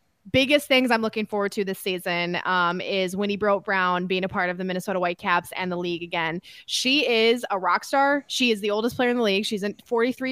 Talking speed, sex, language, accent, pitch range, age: 220 wpm, female, English, American, 200-245 Hz, 20-39